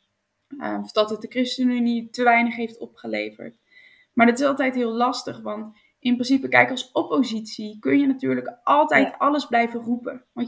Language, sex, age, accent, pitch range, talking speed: Dutch, female, 20-39, Dutch, 230-275 Hz, 165 wpm